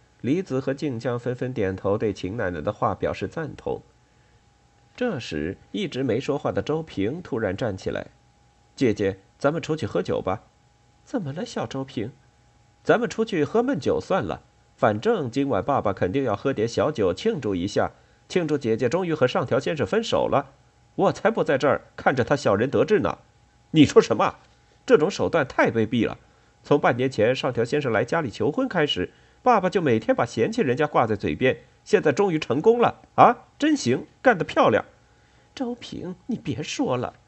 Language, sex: Chinese, male